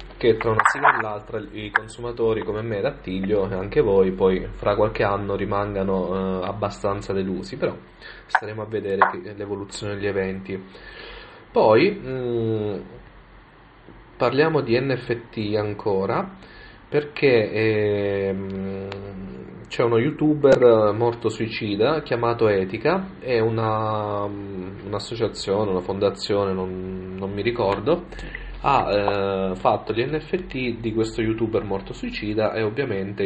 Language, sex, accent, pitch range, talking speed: Italian, male, native, 95-115 Hz, 125 wpm